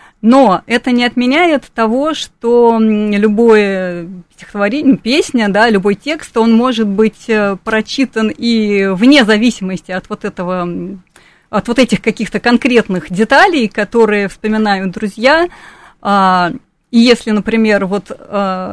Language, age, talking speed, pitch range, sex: Russian, 30-49, 110 wpm, 205-265 Hz, female